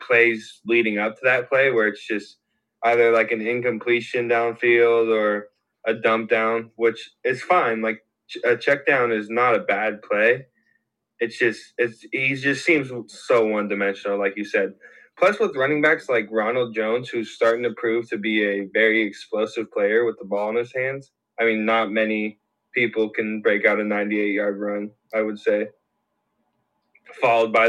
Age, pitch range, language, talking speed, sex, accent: 10-29, 110-120 Hz, English, 180 wpm, male, American